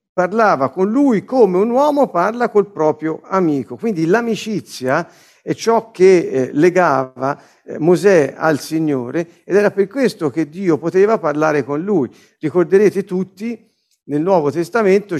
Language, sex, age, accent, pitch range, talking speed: Italian, male, 50-69, native, 150-210 Hz, 135 wpm